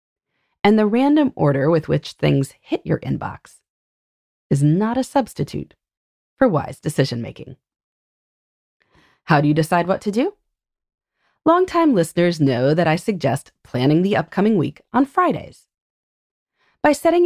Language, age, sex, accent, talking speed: English, 30-49, female, American, 135 wpm